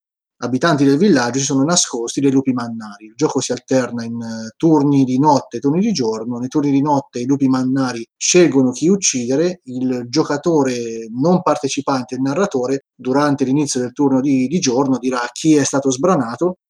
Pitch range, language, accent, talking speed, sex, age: 130-160 Hz, Italian, native, 175 wpm, male, 30-49